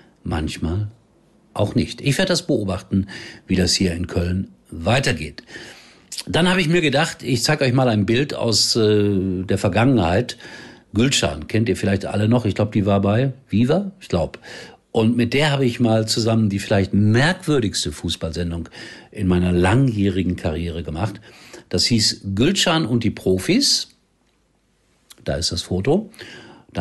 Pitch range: 95-125 Hz